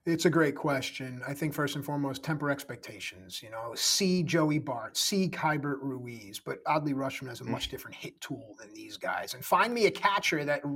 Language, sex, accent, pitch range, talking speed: English, male, American, 140-175 Hz, 205 wpm